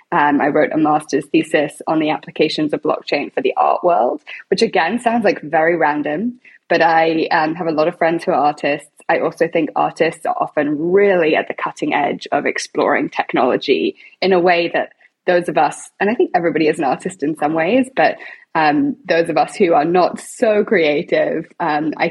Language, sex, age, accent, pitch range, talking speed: English, female, 10-29, British, 155-200 Hz, 205 wpm